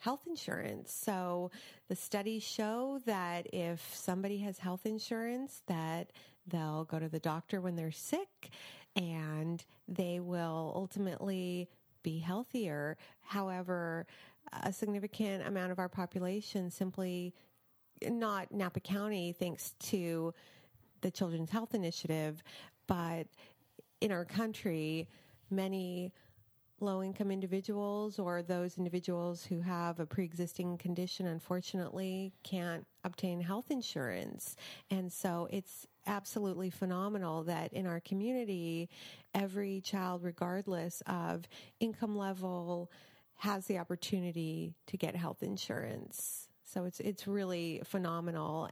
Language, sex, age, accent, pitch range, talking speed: English, female, 30-49, American, 170-200 Hz, 115 wpm